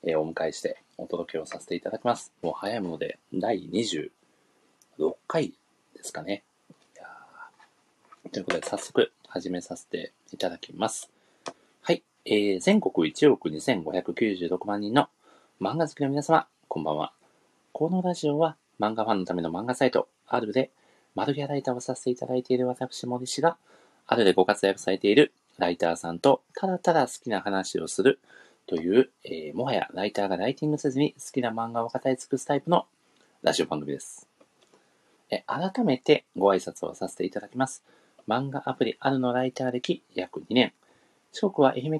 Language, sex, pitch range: Japanese, male, 105-155 Hz